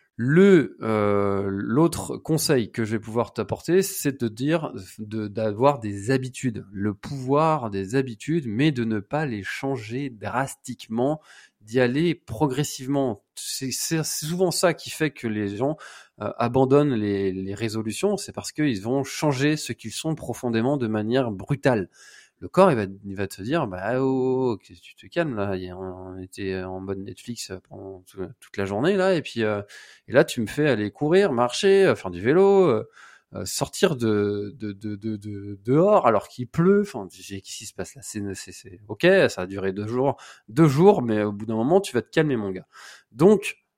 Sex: male